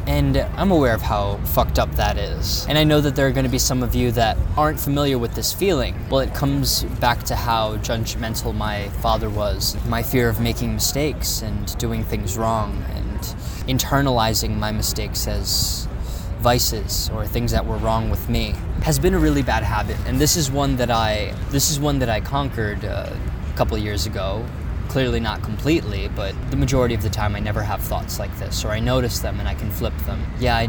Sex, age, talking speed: male, 20-39, 210 wpm